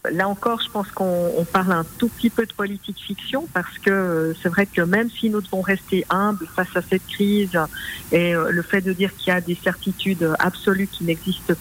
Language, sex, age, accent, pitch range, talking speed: French, female, 50-69, French, 175-200 Hz, 215 wpm